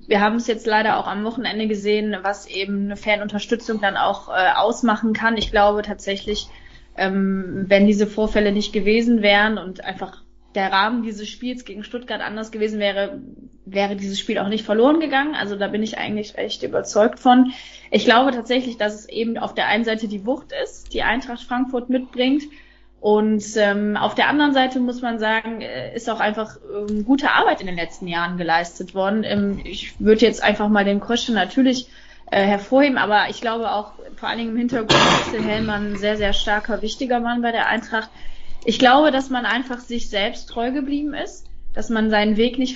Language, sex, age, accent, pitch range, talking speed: German, female, 20-39, German, 210-245 Hz, 195 wpm